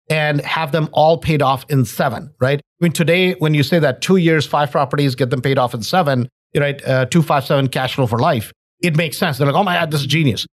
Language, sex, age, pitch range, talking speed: English, male, 50-69, 135-170 Hz, 265 wpm